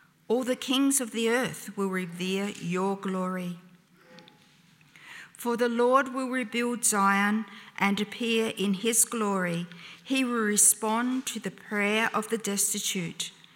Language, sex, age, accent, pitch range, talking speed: English, female, 50-69, Australian, 190-230 Hz, 135 wpm